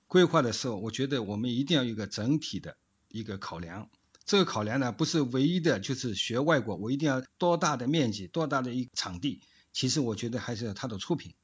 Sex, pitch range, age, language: male, 110-150 Hz, 50-69, Chinese